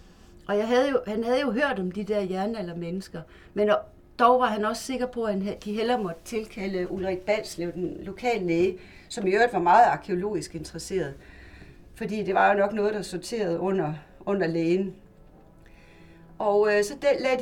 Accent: native